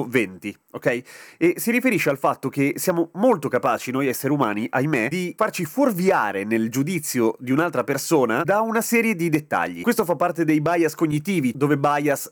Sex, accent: male, native